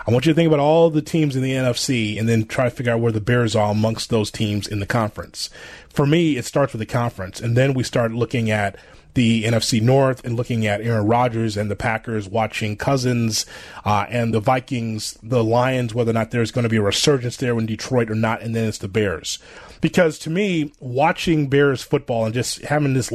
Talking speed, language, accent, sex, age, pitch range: 230 wpm, English, American, male, 30-49, 110-140 Hz